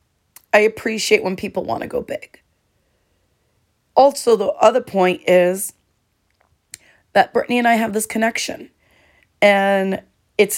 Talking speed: 125 wpm